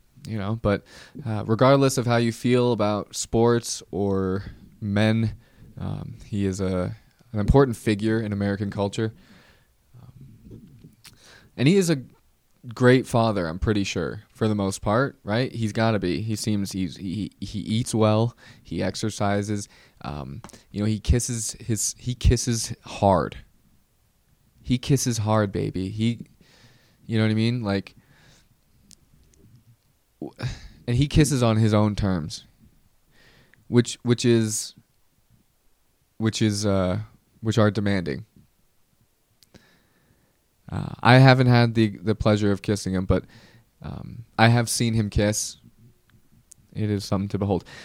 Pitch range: 100-120 Hz